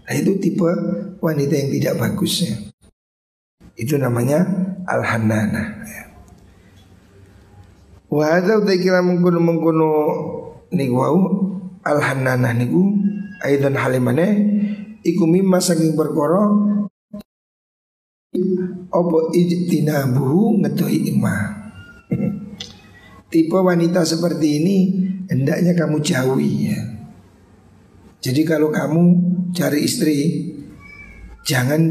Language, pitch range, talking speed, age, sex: Indonesian, 135-185 Hz, 85 wpm, 50-69, male